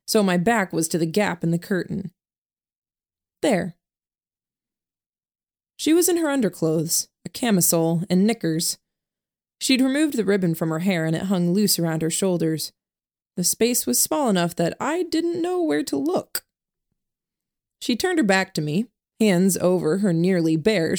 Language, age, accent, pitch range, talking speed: English, 20-39, American, 165-210 Hz, 165 wpm